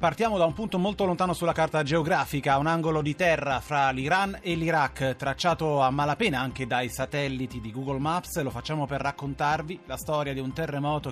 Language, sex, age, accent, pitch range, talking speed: Italian, male, 30-49, native, 130-170 Hz, 190 wpm